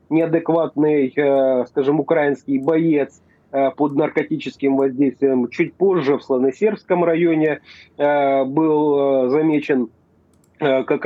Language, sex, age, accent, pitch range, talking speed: Russian, male, 30-49, native, 135-160 Hz, 80 wpm